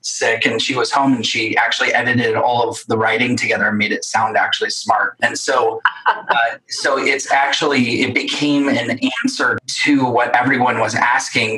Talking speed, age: 180 wpm, 30-49